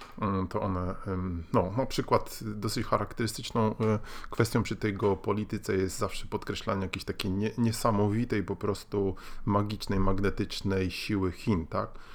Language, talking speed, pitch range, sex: Polish, 125 wpm, 90-110 Hz, male